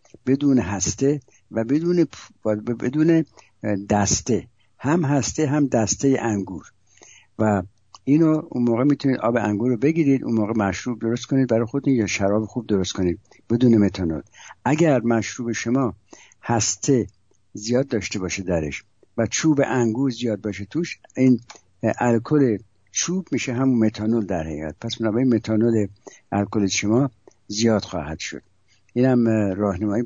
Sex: male